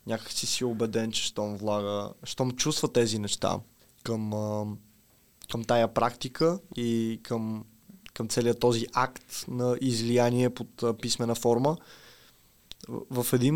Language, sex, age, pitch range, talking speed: Bulgarian, male, 20-39, 110-125 Hz, 125 wpm